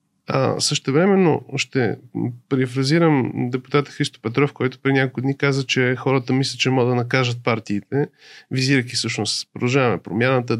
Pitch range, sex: 125-150 Hz, male